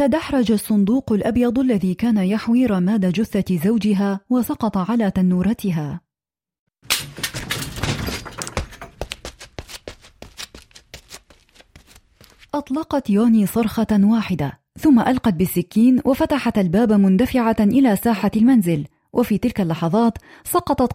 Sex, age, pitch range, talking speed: female, 30-49, 190-240 Hz, 85 wpm